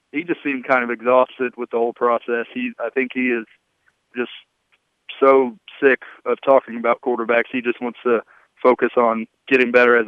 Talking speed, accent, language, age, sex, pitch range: 185 wpm, American, English, 20-39, male, 120-140 Hz